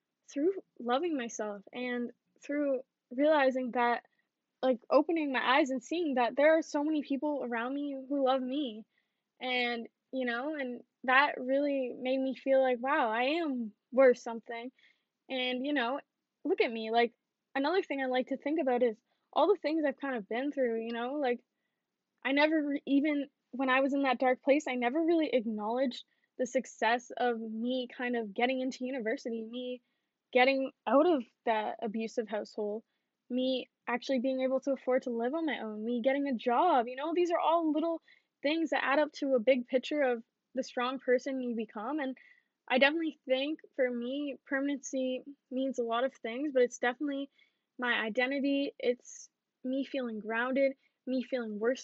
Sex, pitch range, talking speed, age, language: female, 240-280 Hz, 180 wpm, 10-29, English